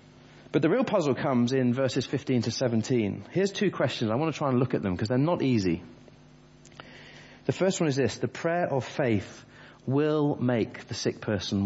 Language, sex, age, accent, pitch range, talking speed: English, male, 30-49, British, 110-140 Hz, 200 wpm